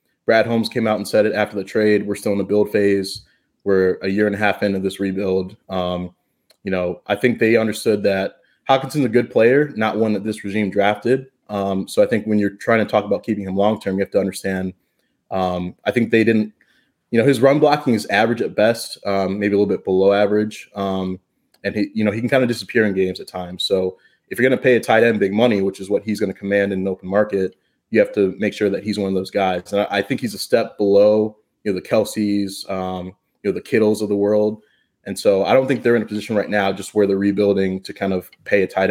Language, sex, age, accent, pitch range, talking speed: English, male, 20-39, American, 95-105 Hz, 260 wpm